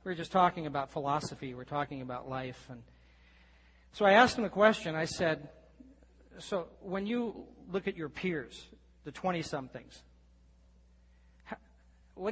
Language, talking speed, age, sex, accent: English, 145 wpm, 40-59, male, American